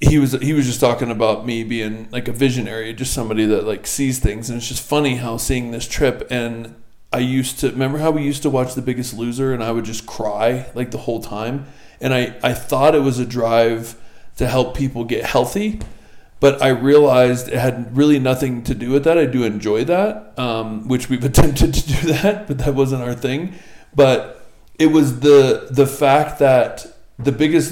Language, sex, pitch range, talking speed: English, male, 115-140 Hz, 210 wpm